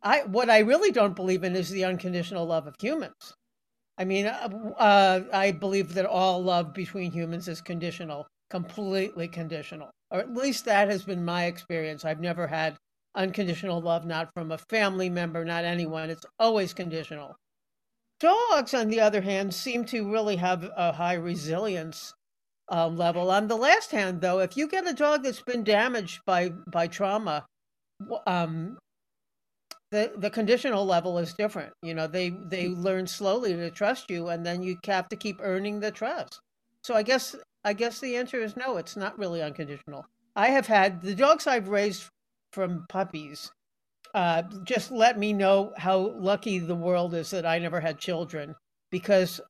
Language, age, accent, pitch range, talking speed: English, 50-69, American, 170-215 Hz, 175 wpm